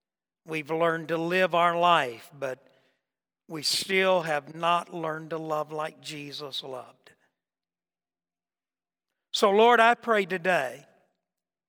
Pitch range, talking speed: 145-175 Hz, 115 wpm